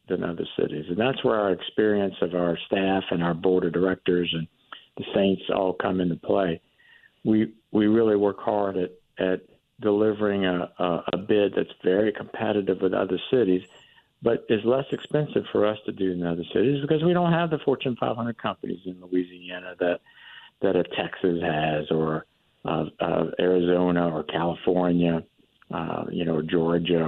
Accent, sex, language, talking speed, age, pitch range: American, male, English, 170 wpm, 50-69, 90-115 Hz